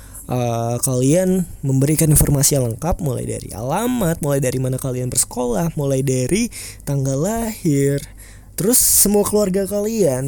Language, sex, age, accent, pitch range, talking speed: Indonesian, male, 20-39, native, 115-165 Hz, 130 wpm